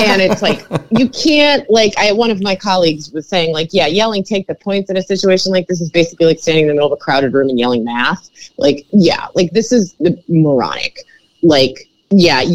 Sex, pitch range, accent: female, 175-250 Hz, American